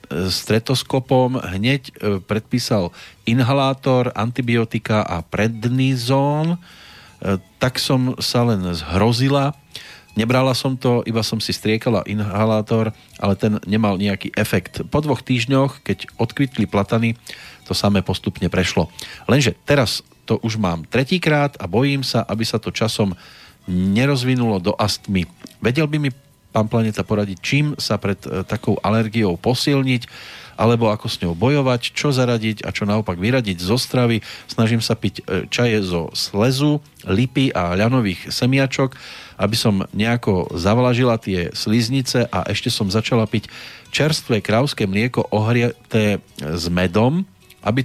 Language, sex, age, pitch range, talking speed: Slovak, male, 40-59, 100-125 Hz, 130 wpm